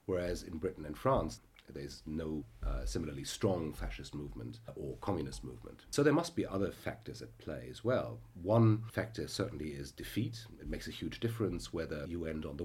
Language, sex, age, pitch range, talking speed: English, male, 40-59, 80-115 Hz, 190 wpm